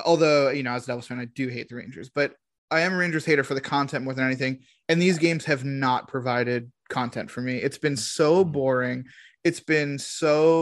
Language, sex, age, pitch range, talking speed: English, male, 20-39, 130-155 Hz, 225 wpm